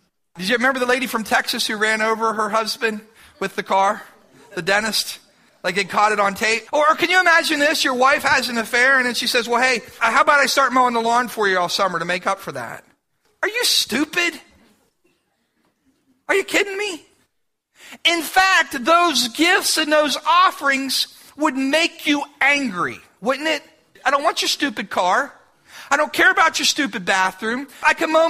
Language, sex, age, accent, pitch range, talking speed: English, male, 40-59, American, 225-320 Hz, 195 wpm